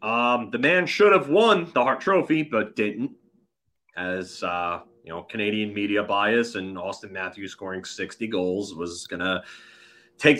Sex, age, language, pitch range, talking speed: male, 30-49, English, 95-125 Hz, 160 wpm